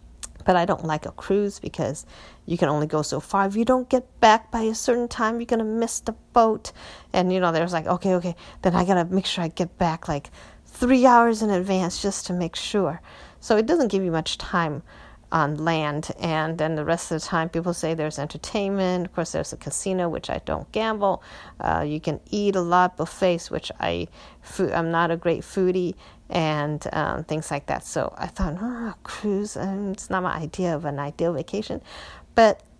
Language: English